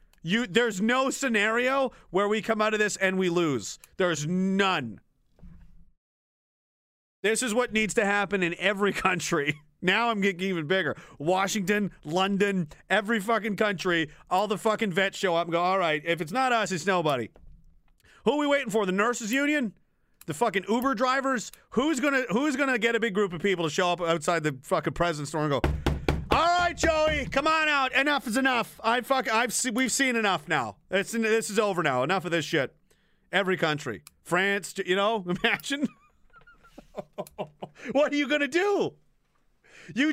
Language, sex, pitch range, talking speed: English, male, 180-245 Hz, 180 wpm